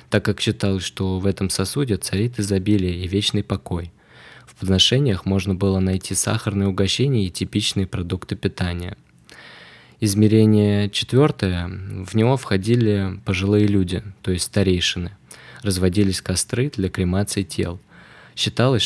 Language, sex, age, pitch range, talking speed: Russian, male, 20-39, 95-105 Hz, 125 wpm